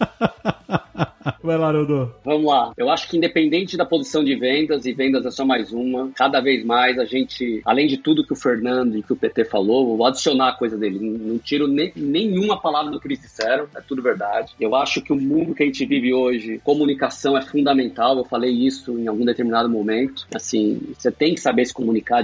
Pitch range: 125-150 Hz